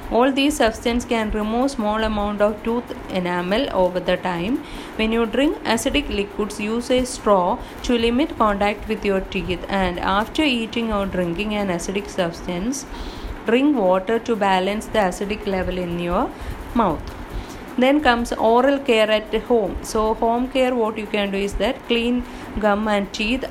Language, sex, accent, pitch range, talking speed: English, female, Indian, 195-235 Hz, 165 wpm